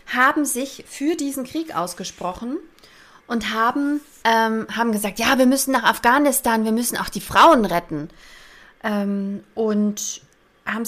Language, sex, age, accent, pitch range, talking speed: German, female, 30-49, German, 205-260 Hz, 140 wpm